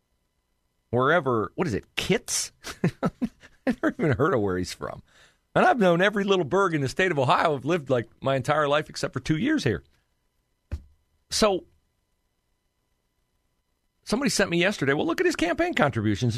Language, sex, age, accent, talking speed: English, male, 40-59, American, 170 wpm